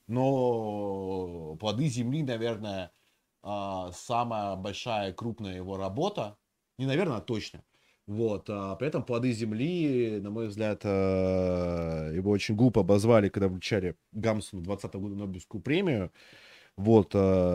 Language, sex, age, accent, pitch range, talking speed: Russian, male, 20-39, native, 100-135 Hz, 115 wpm